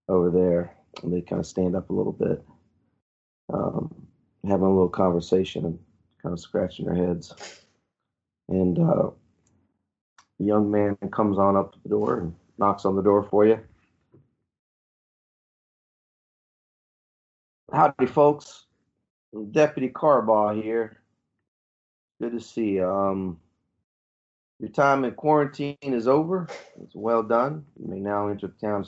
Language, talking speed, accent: English, 135 wpm, American